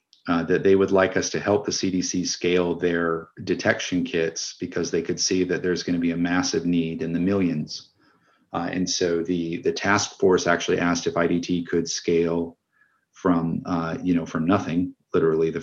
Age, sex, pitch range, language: 40-59, male, 85-90 Hz, English